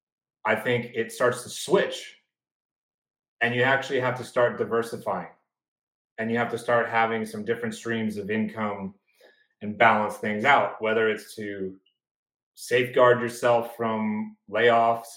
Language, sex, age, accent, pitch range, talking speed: English, male, 30-49, American, 110-130 Hz, 140 wpm